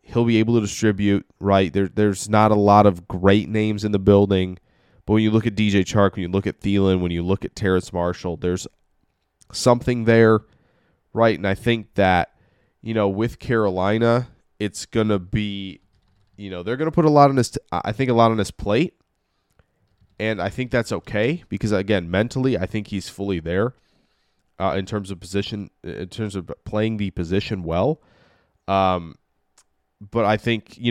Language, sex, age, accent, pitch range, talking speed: English, male, 20-39, American, 95-110 Hz, 190 wpm